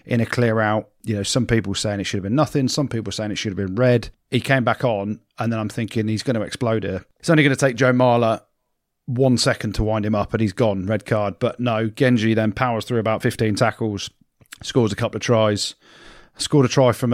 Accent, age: British, 40-59